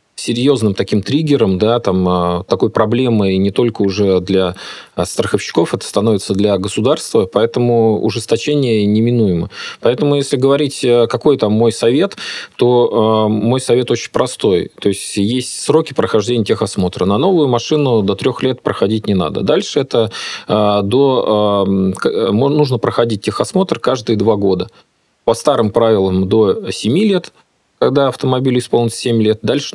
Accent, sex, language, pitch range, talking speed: native, male, Russian, 105-130 Hz, 135 wpm